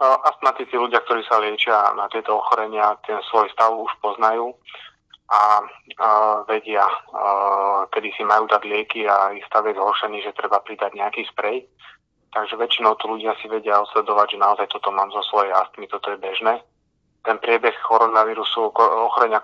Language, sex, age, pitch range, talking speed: Slovak, male, 20-39, 100-110 Hz, 165 wpm